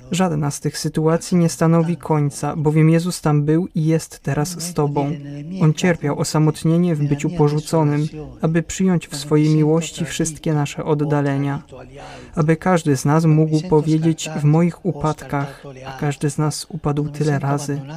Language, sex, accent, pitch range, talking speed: Polish, male, native, 145-165 Hz, 150 wpm